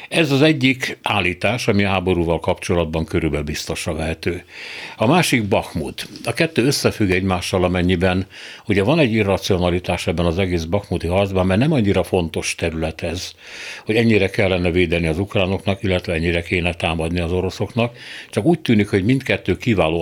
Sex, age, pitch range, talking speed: male, 60-79, 90-110 Hz, 155 wpm